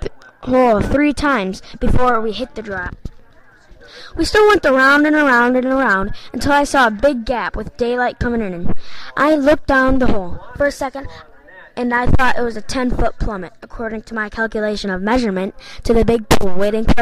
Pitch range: 220-265 Hz